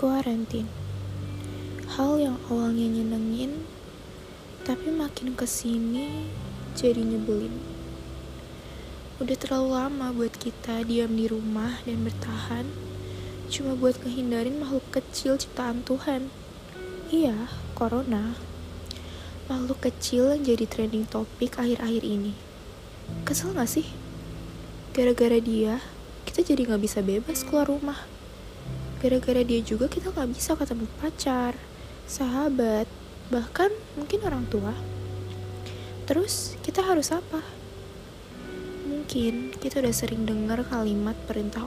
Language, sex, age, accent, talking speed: Indonesian, female, 20-39, native, 105 wpm